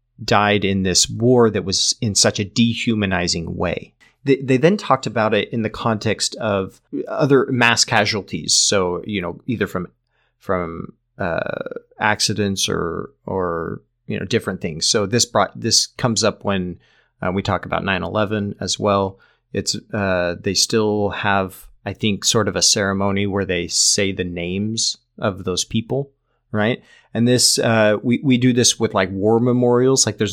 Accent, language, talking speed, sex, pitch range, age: American, English, 170 wpm, male, 100-120 Hz, 30-49